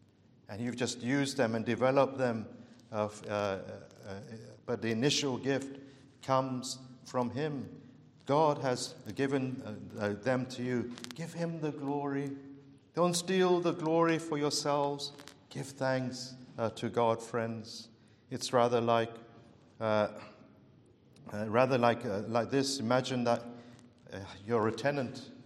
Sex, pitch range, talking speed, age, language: male, 120-155 Hz, 135 wpm, 50-69, English